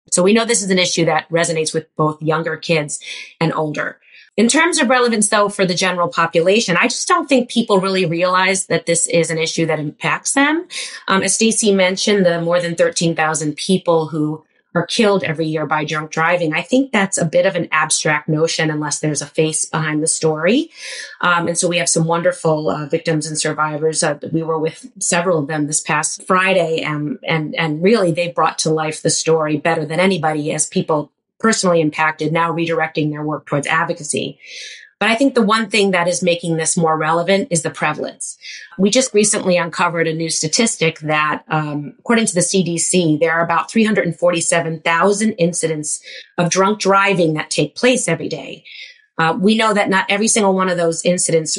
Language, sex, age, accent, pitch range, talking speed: English, female, 30-49, American, 160-200 Hz, 195 wpm